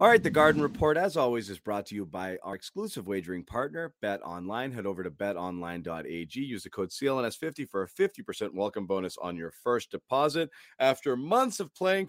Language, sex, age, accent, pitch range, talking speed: English, male, 30-49, American, 100-150 Hz, 190 wpm